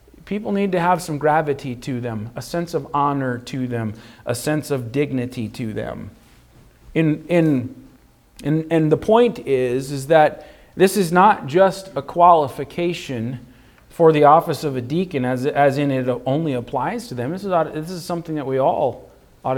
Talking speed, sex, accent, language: 180 wpm, male, American, English